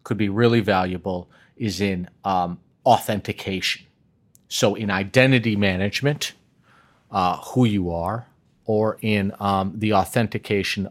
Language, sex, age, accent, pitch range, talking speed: English, male, 40-59, American, 95-120 Hz, 115 wpm